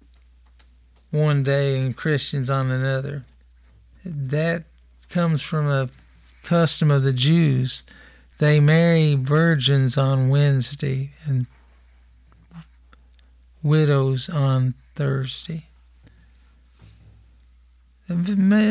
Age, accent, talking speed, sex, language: 50-69, American, 75 wpm, male, English